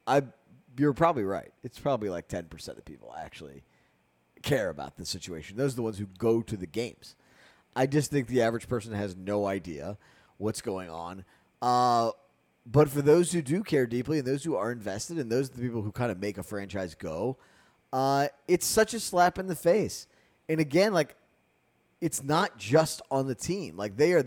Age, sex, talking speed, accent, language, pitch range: 20-39, male, 200 wpm, American, English, 105-140 Hz